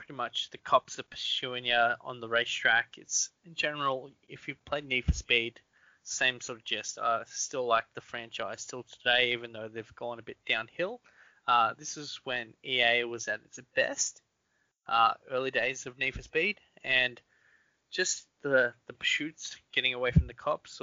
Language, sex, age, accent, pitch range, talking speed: English, male, 20-39, Australian, 115-135 Hz, 185 wpm